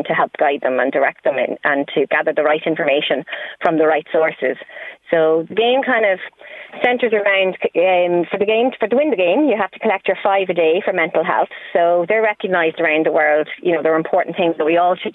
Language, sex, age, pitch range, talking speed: English, female, 30-49, 165-215 Hz, 240 wpm